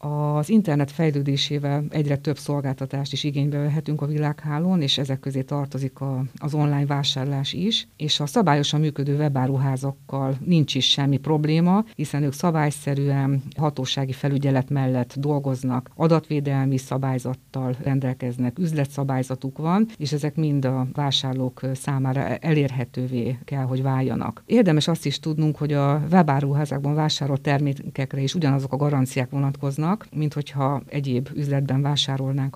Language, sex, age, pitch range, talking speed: Hungarian, female, 50-69, 135-150 Hz, 125 wpm